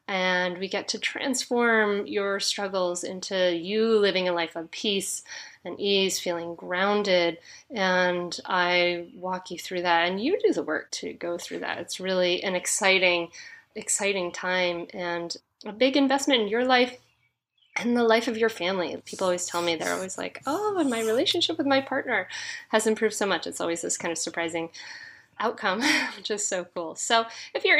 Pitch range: 180-255 Hz